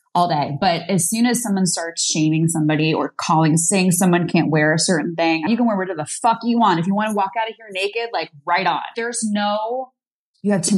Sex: female